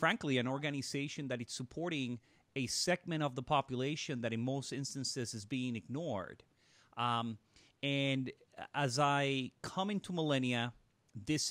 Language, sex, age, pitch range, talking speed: English, male, 30-49, 115-145 Hz, 135 wpm